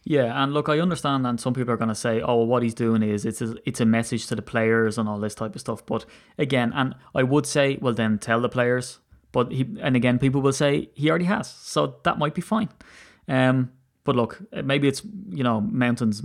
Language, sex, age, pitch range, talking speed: English, male, 20-39, 110-125 Hz, 245 wpm